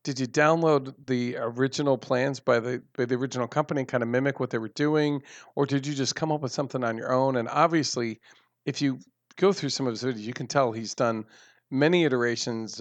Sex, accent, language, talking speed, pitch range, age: male, American, English, 225 wpm, 115-145 Hz, 40-59